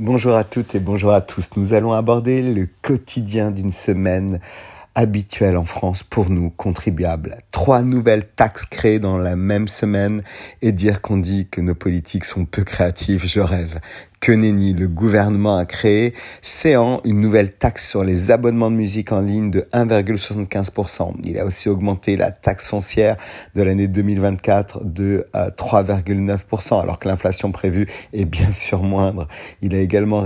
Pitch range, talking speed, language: 95-105 Hz, 160 wpm, French